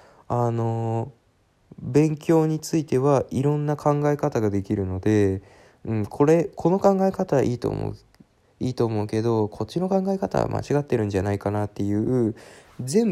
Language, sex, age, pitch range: Japanese, male, 20-39, 100-140 Hz